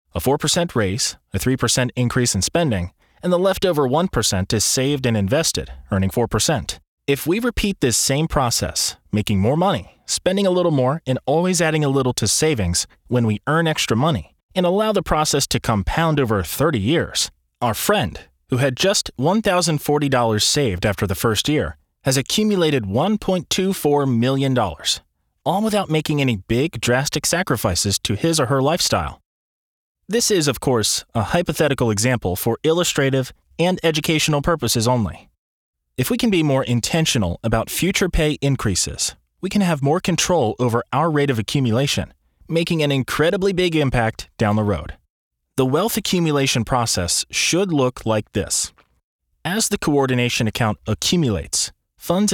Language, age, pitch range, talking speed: English, 30-49, 110-160 Hz, 155 wpm